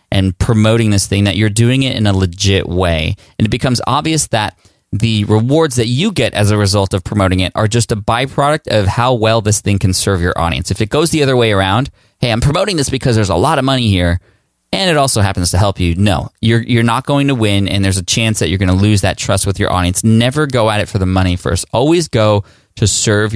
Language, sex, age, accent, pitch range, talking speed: English, male, 20-39, American, 95-115 Hz, 250 wpm